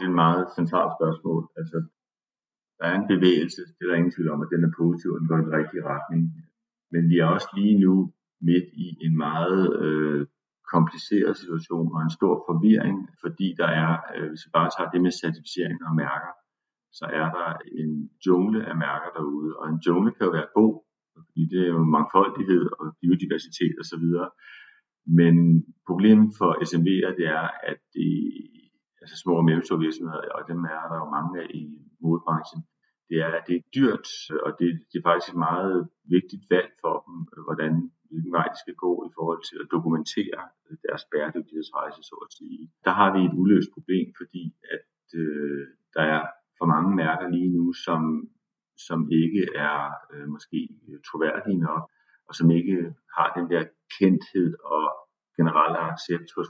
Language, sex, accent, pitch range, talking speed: Danish, male, native, 80-90 Hz, 185 wpm